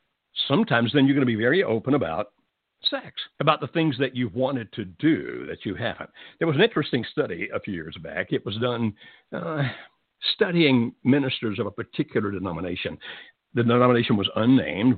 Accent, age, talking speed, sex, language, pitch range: American, 60-79, 175 wpm, male, English, 105-135 Hz